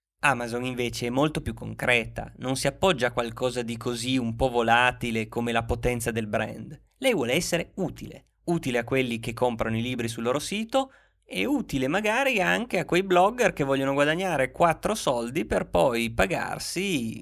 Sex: male